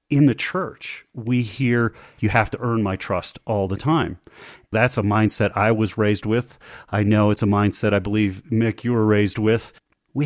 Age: 40-59